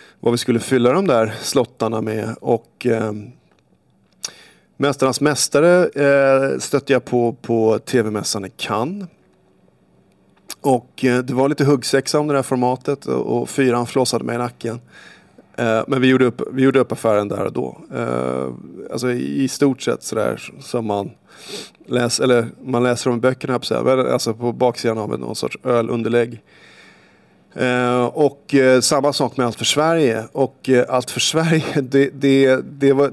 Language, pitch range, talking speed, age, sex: Swedish, 115-135 Hz, 170 wpm, 30-49, male